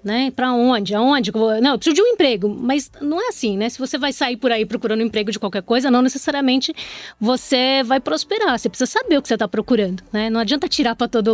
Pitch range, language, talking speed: 210-260 Hz, Portuguese, 245 wpm